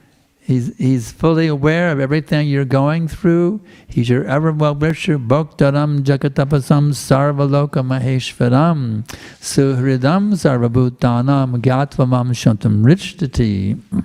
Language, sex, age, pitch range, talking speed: English, male, 60-79, 130-165 Hz, 70 wpm